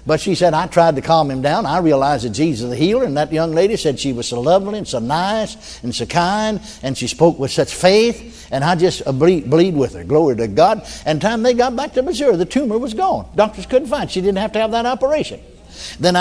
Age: 60-79